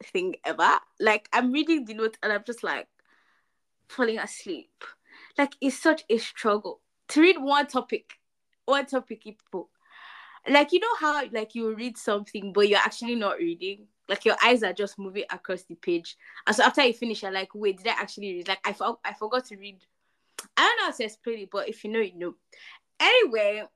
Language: English